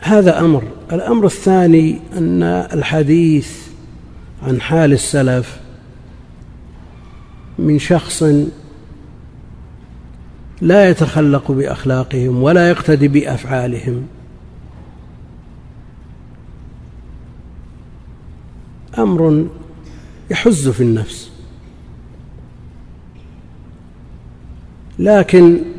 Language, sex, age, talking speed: Arabic, male, 50-69, 50 wpm